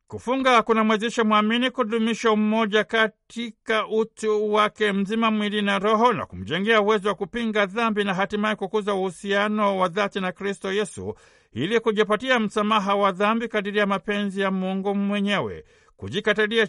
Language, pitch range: Swahili, 195-220 Hz